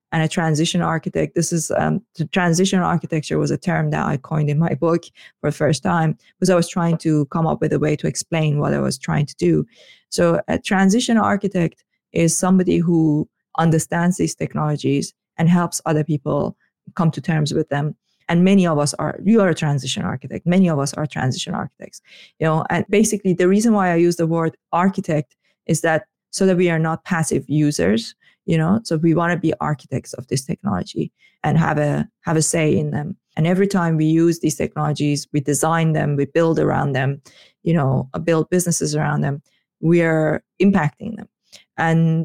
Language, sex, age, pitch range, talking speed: English, female, 20-39, 150-180 Hz, 200 wpm